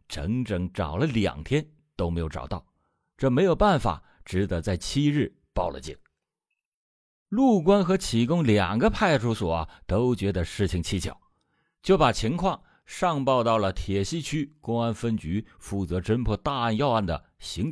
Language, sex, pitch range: Chinese, male, 90-155 Hz